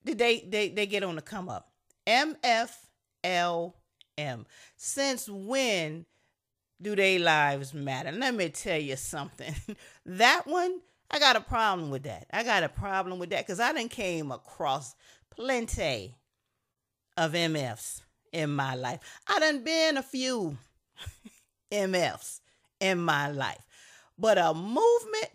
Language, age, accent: English, 40-59, American